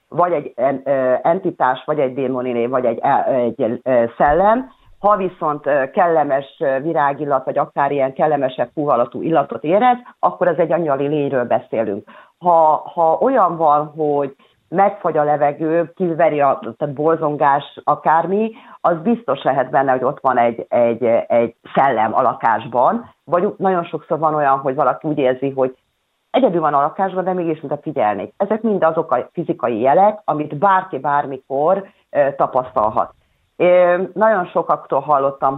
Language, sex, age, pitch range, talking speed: Hungarian, female, 40-59, 135-170 Hz, 145 wpm